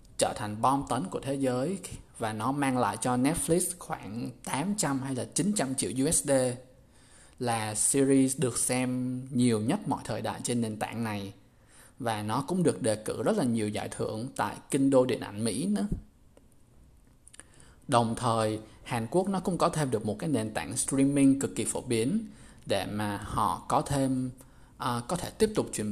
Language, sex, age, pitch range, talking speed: Vietnamese, male, 20-39, 115-145 Hz, 185 wpm